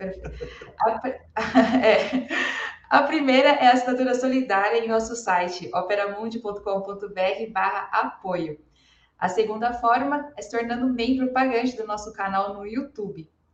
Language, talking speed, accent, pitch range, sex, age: Portuguese, 120 wpm, Brazilian, 195-250 Hz, female, 20-39